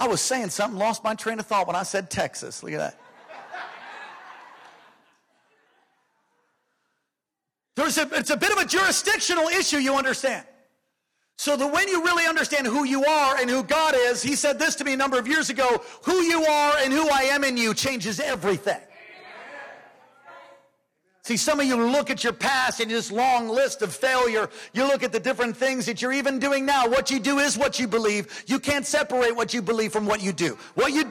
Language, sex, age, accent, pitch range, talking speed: English, male, 50-69, American, 215-280 Hz, 205 wpm